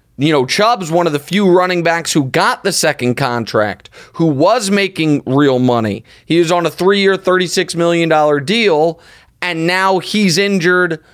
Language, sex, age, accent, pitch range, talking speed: English, male, 30-49, American, 150-190 Hz, 165 wpm